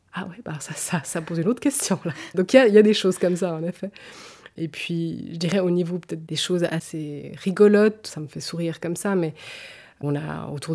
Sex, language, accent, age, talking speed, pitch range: female, French, French, 20-39, 245 wpm, 150-190 Hz